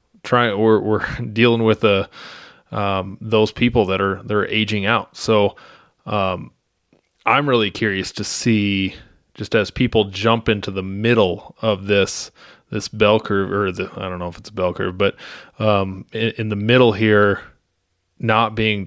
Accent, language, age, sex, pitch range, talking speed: American, English, 20-39, male, 100-115 Hz, 165 wpm